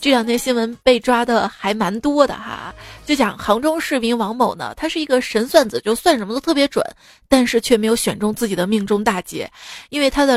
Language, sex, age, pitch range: Chinese, female, 20-39, 225-290 Hz